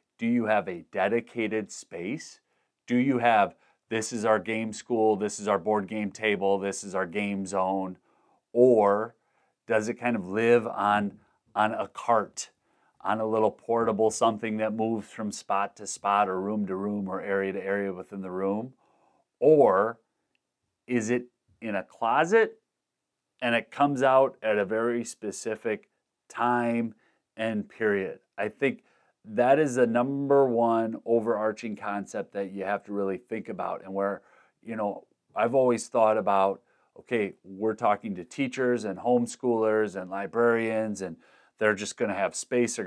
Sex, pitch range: male, 100-120 Hz